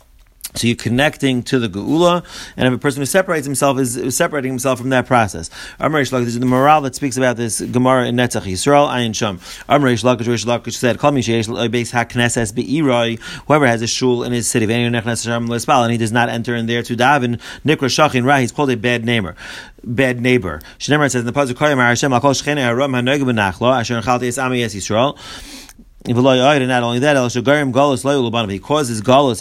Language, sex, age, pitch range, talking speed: Indonesian, male, 30-49, 120-140 Hz, 200 wpm